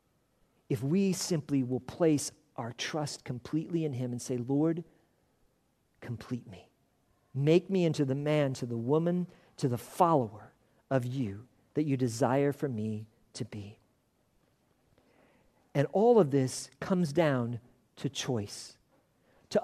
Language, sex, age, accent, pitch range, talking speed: English, male, 50-69, American, 130-190 Hz, 135 wpm